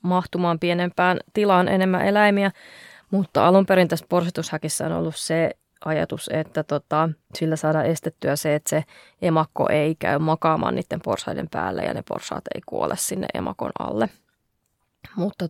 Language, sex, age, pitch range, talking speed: Finnish, female, 20-39, 155-175 Hz, 145 wpm